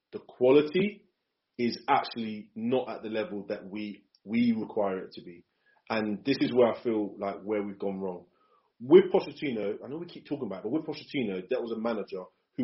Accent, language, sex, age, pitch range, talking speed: British, English, male, 30-49, 105-135 Hz, 205 wpm